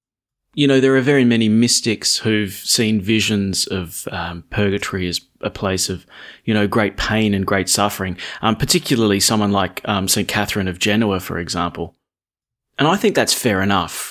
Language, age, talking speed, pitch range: English, 30-49, 175 wpm, 100-130 Hz